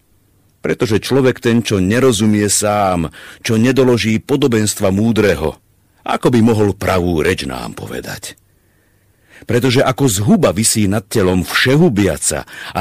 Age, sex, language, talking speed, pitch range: 50-69, male, Slovak, 115 wpm, 85-115 Hz